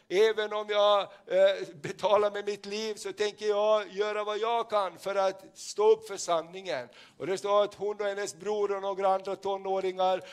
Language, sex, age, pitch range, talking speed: Swedish, male, 60-79, 190-210 Hz, 185 wpm